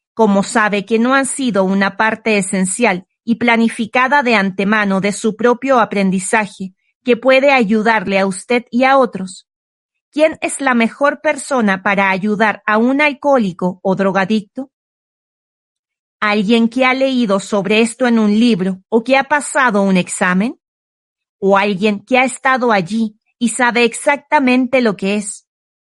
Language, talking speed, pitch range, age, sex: Spanish, 150 wpm, 200-250 Hz, 40-59, female